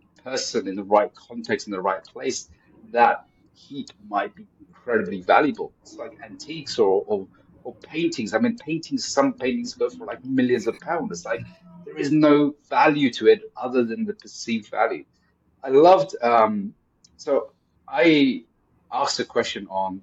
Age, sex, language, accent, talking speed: 30-49, male, English, British, 165 wpm